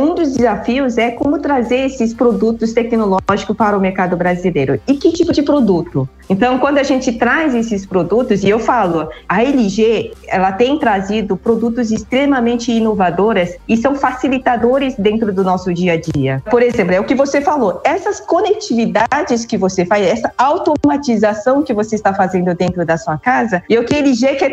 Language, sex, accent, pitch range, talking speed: Portuguese, female, Brazilian, 195-265 Hz, 180 wpm